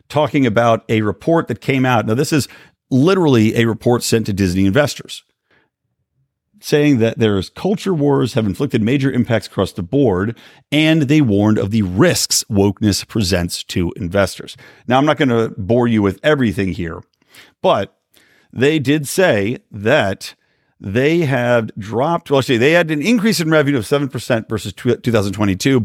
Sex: male